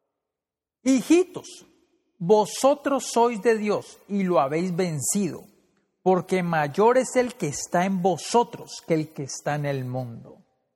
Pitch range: 185-275 Hz